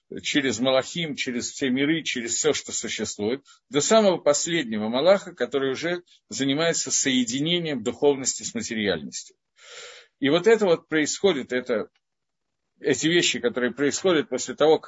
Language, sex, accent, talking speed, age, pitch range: Russian, male, native, 130 wpm, 50-69, 120-180 Hz